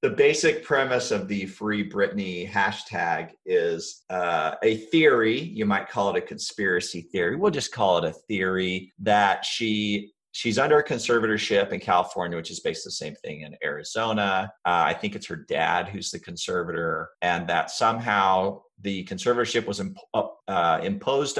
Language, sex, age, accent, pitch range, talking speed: English, male, 40-59, American, 85-105 Hz, 165 wpm